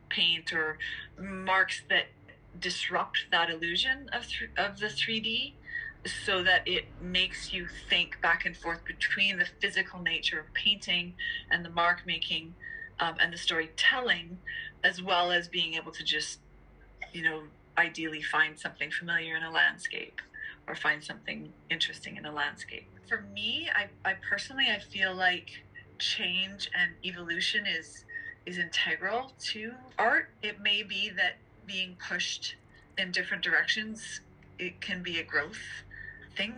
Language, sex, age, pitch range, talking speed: English, female, 30-49, 170-235 Hz, 145 wpm